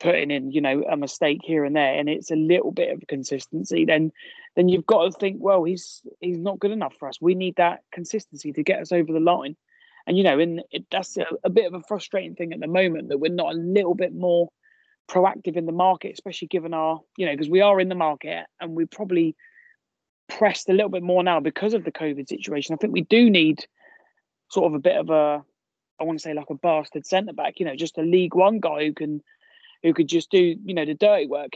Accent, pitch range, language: British, 160-210 Hz, English